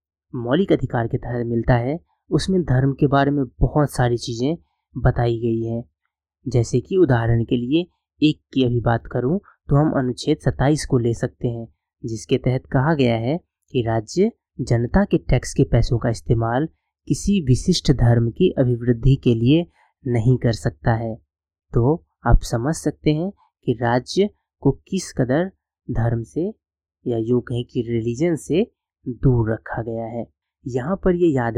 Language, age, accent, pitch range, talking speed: Hindi, 20-39, native, 115-150 Hz, 165 wpm